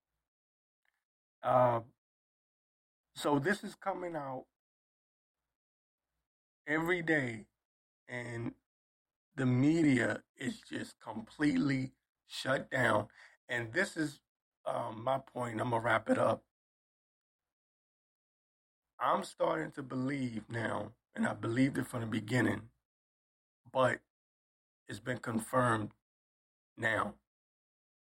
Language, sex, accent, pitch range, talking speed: English, male, American, 110-150 Hz, 95 wpm